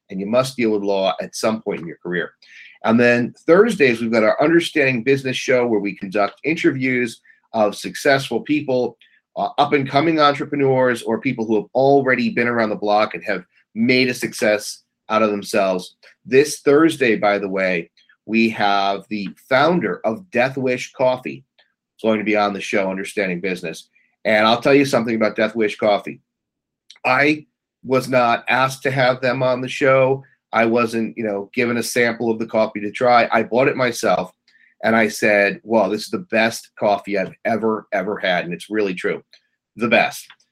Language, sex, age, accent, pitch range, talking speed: English, male, 40-59, American, 105-130 Hz, 180 wpm